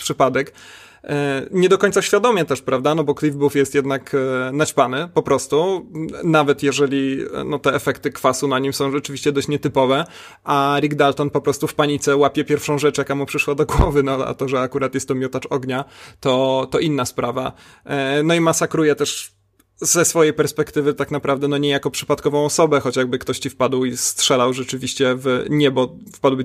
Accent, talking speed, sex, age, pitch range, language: native, 185 wpm, male, 30-49, 135-150 Hz, Polish